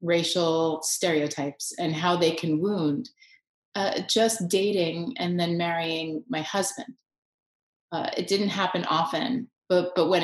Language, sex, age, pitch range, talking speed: English, female, 30-49, 165-210 Hz, 135 wpm